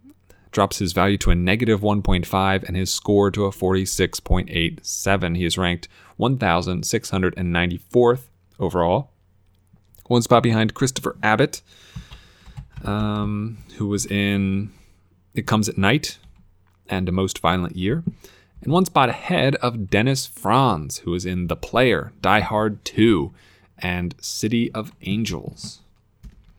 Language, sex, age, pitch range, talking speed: English, male, 30-49, 95-115 Hz, 125 wpm